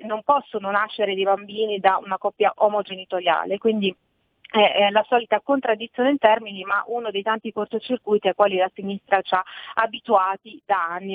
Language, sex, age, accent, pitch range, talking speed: Italian, female, 40-59, native, 200-240 Hz, 160 wpm